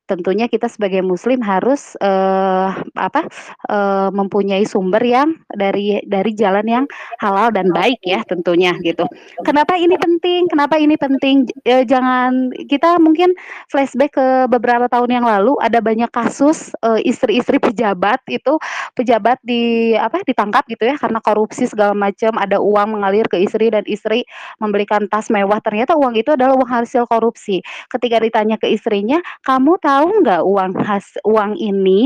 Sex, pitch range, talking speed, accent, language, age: female, 200-265 Hz, 155 wpm, native, Indonesian, 20-39